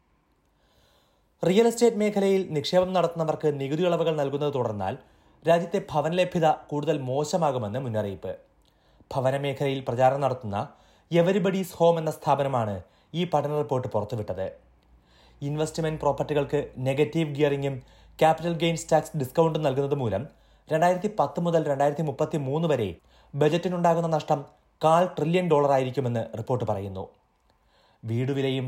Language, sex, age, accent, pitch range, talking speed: Malayalam, male, 30-49, native, 125-165 Hz, 105 wpm